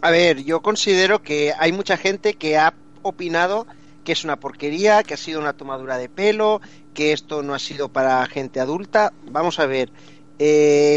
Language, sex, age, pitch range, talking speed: Spanish, male, 30-49, 145-175 Hz, 185 wpm